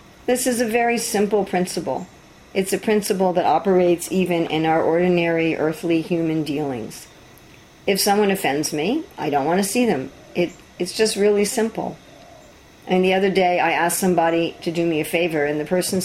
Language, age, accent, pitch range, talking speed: English, 50-69, American, 165-205 Hz, 175 wpm